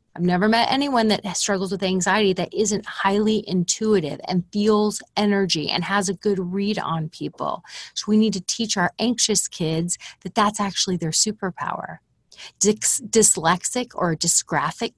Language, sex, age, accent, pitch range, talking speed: English, female, 30-49, American, 180-235 Hz, 150 wpm